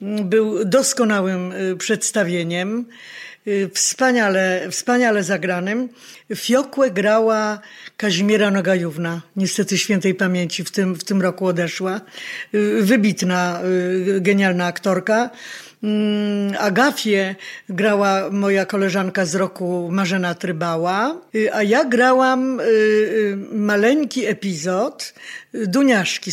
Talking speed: 80 wpm